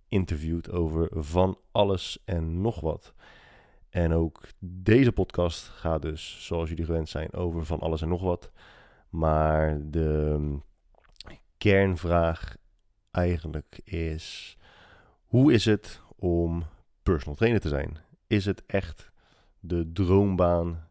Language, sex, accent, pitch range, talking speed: Dutch, male, Dutch, 80-95 Hz, 120 wpm